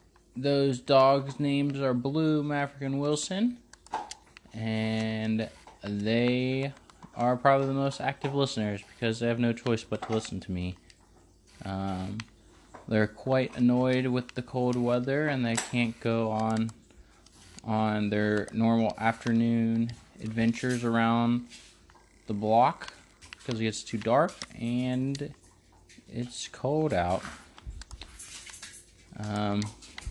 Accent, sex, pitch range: American, male, 105-135 Hz